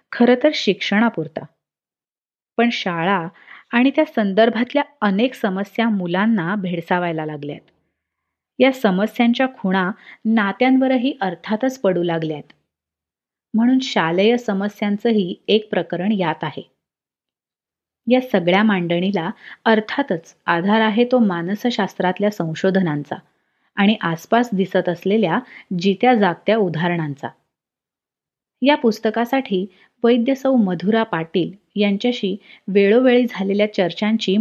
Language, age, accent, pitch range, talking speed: Marathi, 30-49, native, 180-230 Hz, 90 wpm